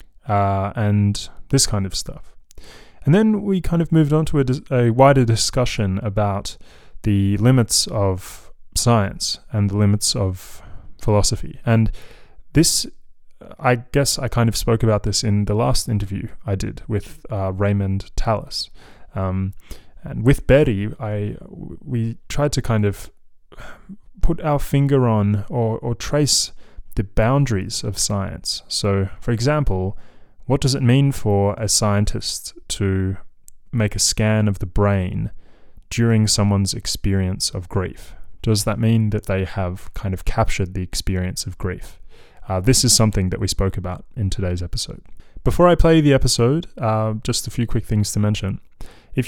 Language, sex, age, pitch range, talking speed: English, male, 20-39, 100-125 Hz, 155 wpm